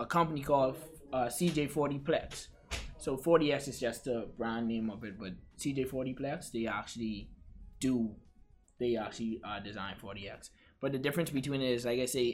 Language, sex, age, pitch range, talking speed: English, male, 20-39, 110-140 Hz, 165 wpm